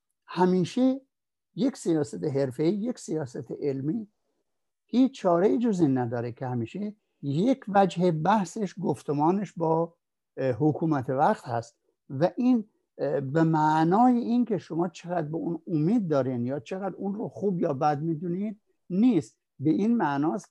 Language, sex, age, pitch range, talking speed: Persian, male, 60-79, 145-205 Hz, 130 wpm